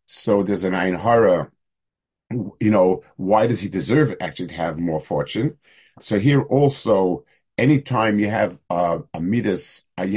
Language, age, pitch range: English, 50-69, 95-125 Hz